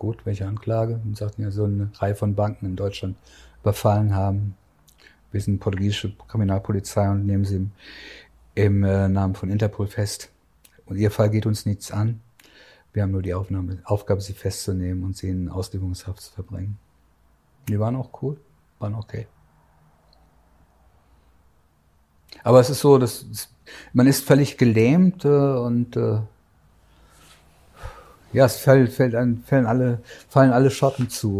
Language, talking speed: German, 145 wpm